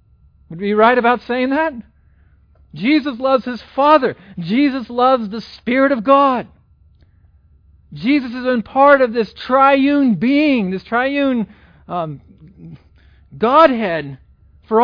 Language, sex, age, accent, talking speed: English, male, 50-69, American, 120 wpm